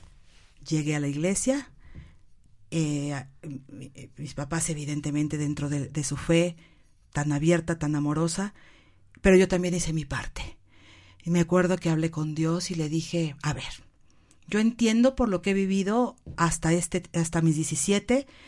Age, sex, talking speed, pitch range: 50-69, female, 150 wpm, 150-215 Hz